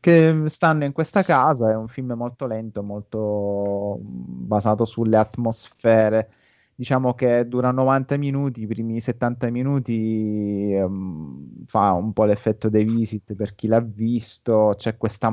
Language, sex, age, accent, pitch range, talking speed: Italian, male, 20-39, native, 105-120 Hz, 135 wpm